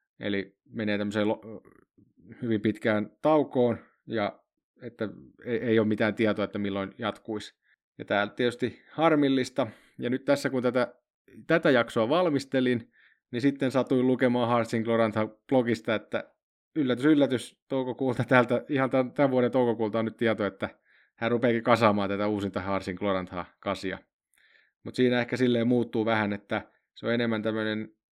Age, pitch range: 30-49, 105-125 Hz